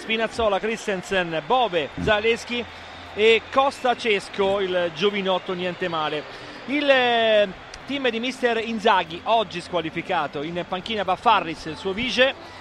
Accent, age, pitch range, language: native, 40-59, 190-240 Hz, Italian